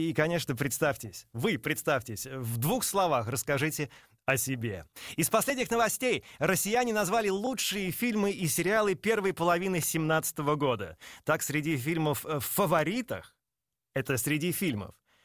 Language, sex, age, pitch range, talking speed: Russian, male, 30-49, 145-195 Hz, 120 wpm